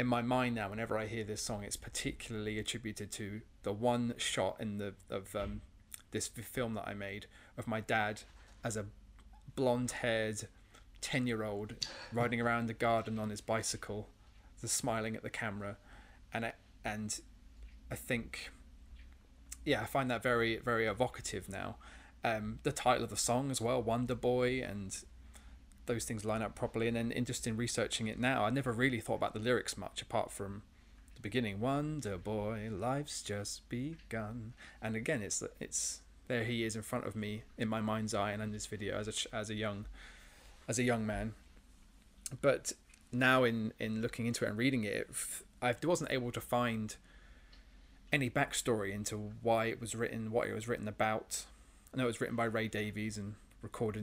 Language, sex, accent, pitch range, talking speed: English, male, British, 100-120 Hz, 185 wpm